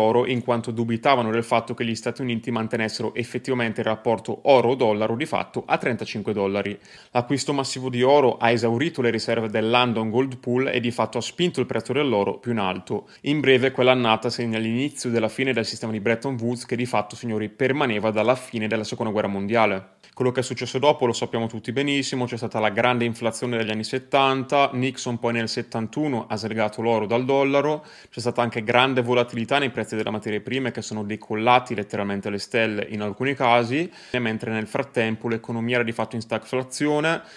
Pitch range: 115-130 Hz